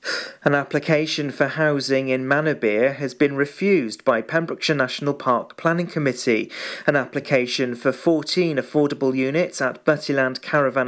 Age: 40-59